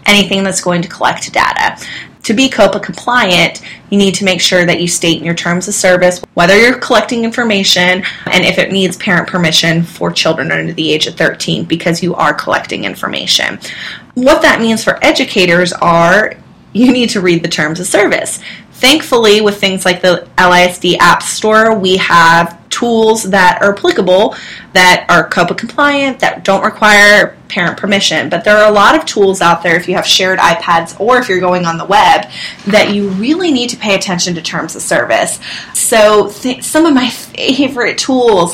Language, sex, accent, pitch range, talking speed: English, female, American, 180-220 Hz, 185 wpm